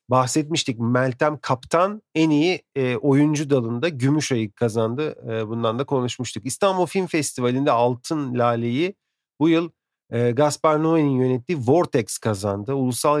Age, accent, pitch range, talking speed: 40-59, native, 115-145 Hz, 130 wpm